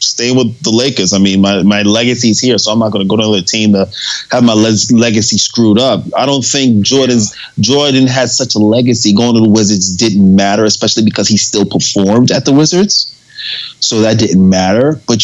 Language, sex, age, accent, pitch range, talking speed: English, male, 20-39, American, 100-125 Hz, 215 wpm